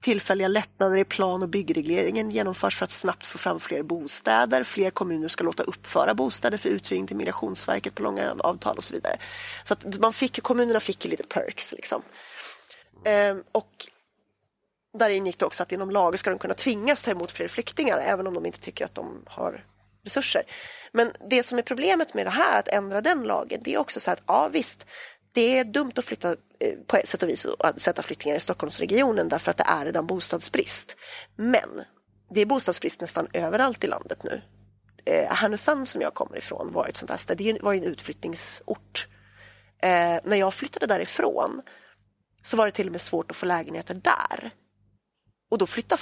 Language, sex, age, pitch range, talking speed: Swedish, female, 30-49, 190-260 Hz, 190 wpm